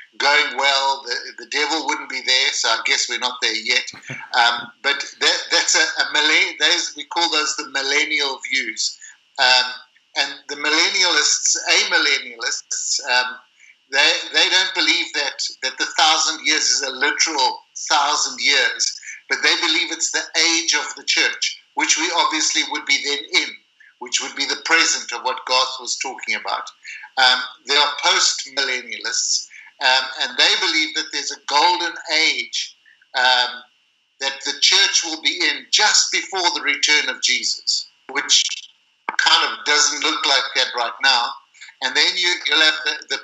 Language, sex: English, male